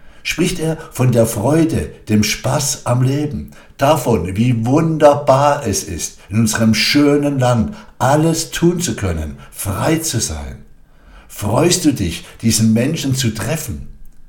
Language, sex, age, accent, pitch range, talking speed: German, male, 60-79, German, 90-135 Hz, 135 wpm